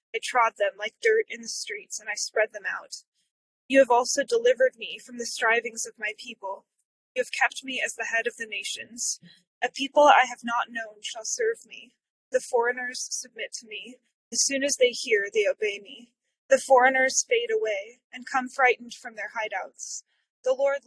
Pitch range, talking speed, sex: 225-270 Hz, 195 wpm, female